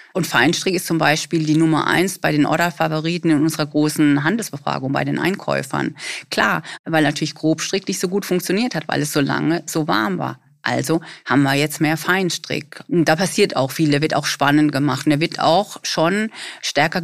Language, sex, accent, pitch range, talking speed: German, female, German, 140-170 Hz, 195 wpm